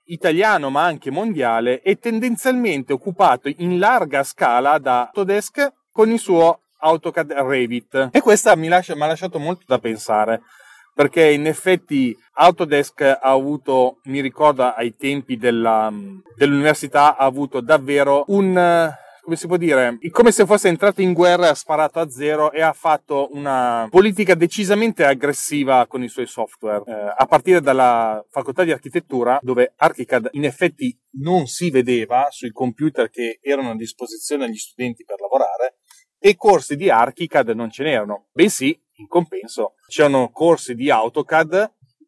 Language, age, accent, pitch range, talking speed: Italian, 30-49, native, 130-175 Hz, 150 wpm